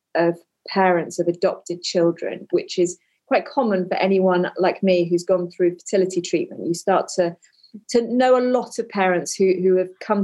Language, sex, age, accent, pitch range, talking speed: English, female, 30-49, British, 175-215 Hz, 180 wpm